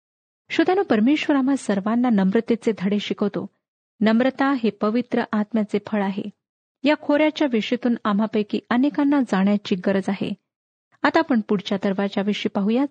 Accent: native